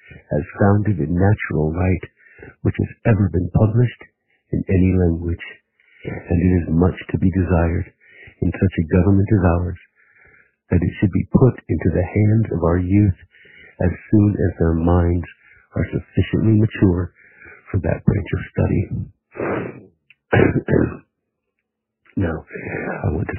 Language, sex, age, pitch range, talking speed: English, male, 60-79, 90-100 Hz, 140 wpm